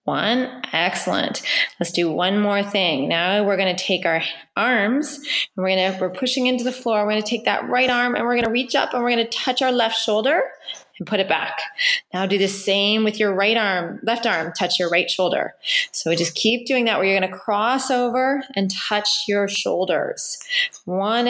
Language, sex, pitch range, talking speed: English, female, 190-245 Hz, 205 wpm